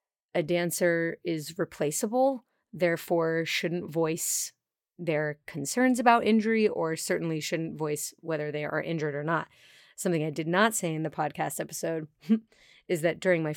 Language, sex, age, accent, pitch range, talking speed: English, female, 30-49, American, 165-210 Hz, 150 wpm